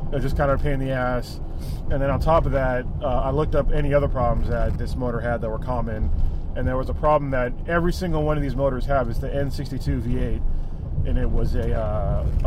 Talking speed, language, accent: 240 wpm, English, American